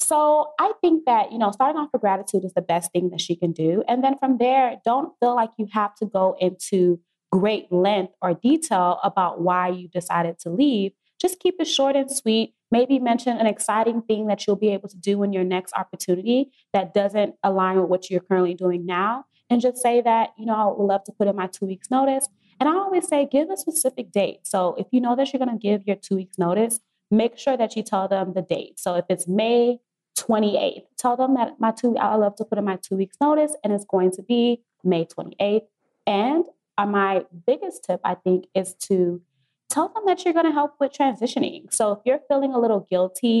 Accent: American